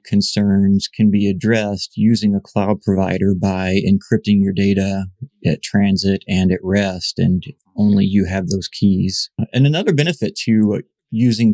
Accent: American